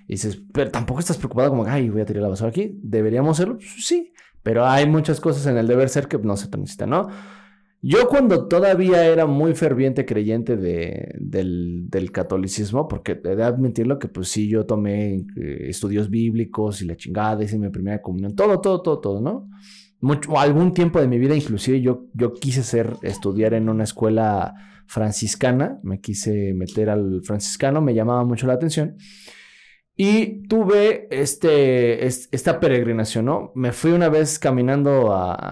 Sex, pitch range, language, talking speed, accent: male, 110-160 Hz, Spanish, 175 wpm, Mexican